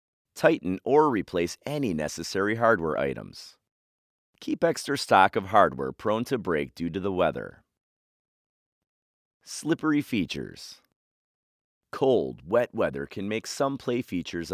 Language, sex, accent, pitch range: English, male, American, 80-115 Hz